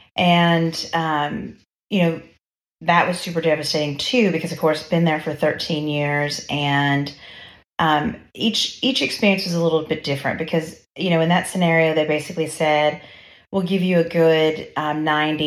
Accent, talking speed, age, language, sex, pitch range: American, 165 wpm, 30-49, English, female, 145-170 Hz